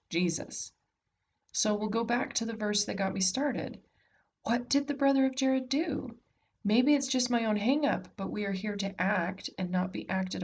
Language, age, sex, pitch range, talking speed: English, 40-59, female, 185-245 Hz, 205 wpm